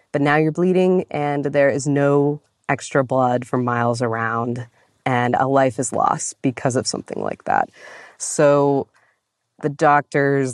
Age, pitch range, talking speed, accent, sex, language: 20-39, 120-140 Hz, 150 wpm, American, female, English